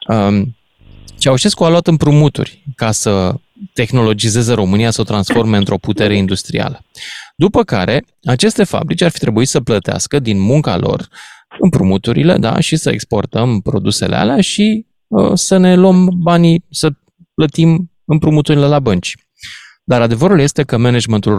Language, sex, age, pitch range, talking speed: Romanian, male, 20-39, 110-165 Hz, 135 wpm